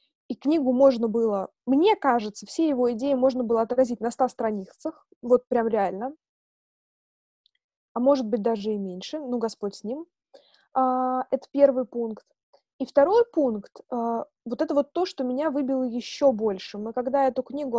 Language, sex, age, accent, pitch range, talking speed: Russian, female, 20-39, native, 240-305 Hz, 160 wpm